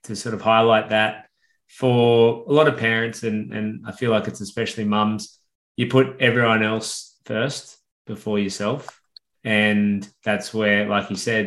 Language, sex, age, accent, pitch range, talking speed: English, male, 20-39, Australian, 100-115 Hz, 160 wpm